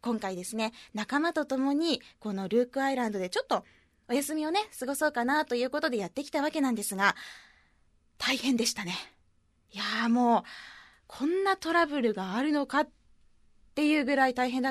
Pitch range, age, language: 220-305 Hz, 20-39, Japanese